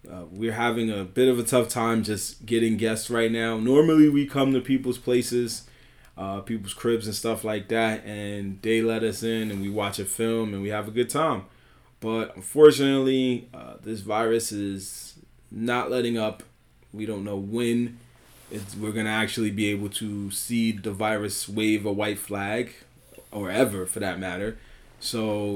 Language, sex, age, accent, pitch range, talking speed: English, male, 20-39, American, 105-125 Hz, 180 wpm